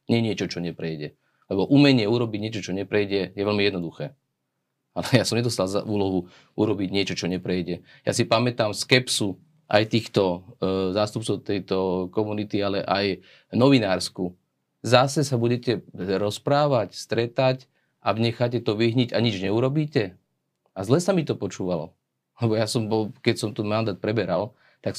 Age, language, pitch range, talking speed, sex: 30-49, Slovak, 95-115 Hz, 155 wpm, male